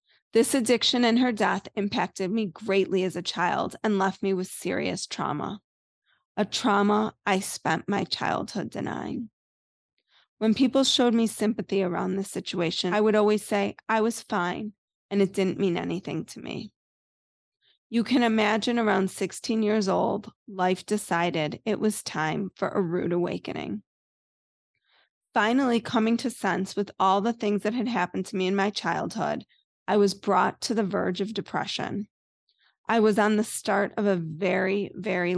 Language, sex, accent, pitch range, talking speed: English, female, American, 190-220 Hz, 160 wpm